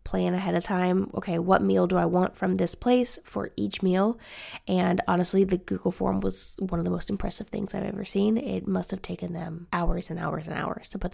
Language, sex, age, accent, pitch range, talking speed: English, female, 10-29, American, 170-225 Hz, 230 wpm